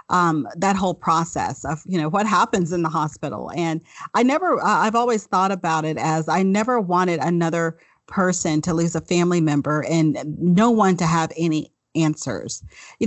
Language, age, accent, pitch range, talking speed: English, 40-59, American, 155-195 Hz, 180 wpm